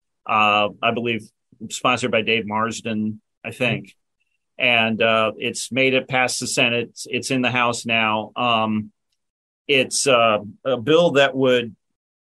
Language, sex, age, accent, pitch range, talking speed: English, male, 40-59, American, 115-140 Hz, 145 wpm